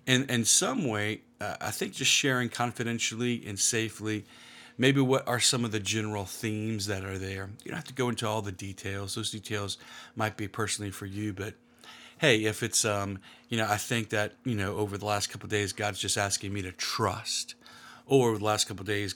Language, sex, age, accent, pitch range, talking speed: English, male, 40-59, American, 100-120 Hz, 220 wpm